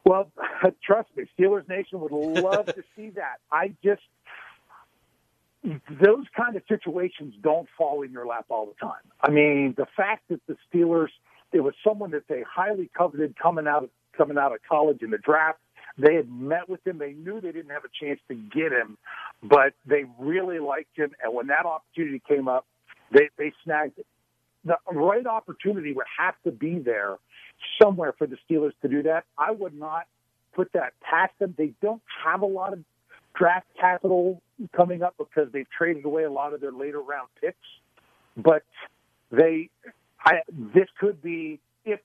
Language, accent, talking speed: English, American, 180 wpm